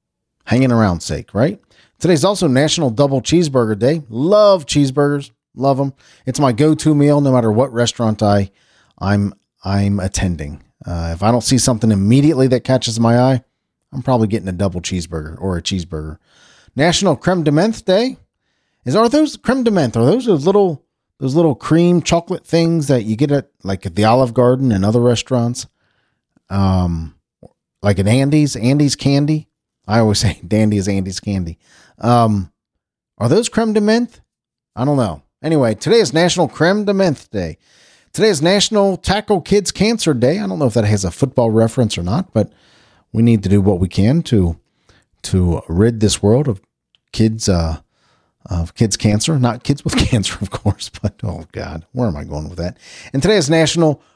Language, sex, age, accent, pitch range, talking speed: English, male, 40-59, American, 100-155 Hz, 180 wpm